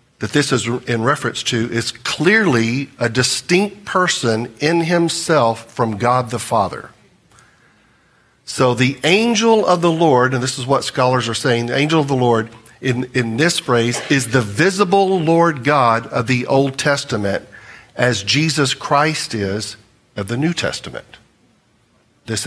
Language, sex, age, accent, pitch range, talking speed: English, male, 50-69, American, 115-160 Hz, 150 wpm